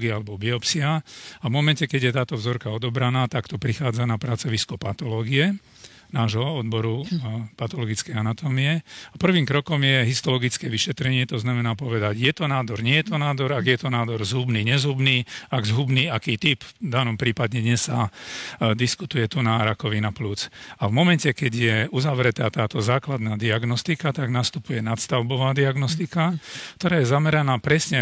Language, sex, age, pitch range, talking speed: Slovak, male, 40-59, 120-150 Hz, 155 wpm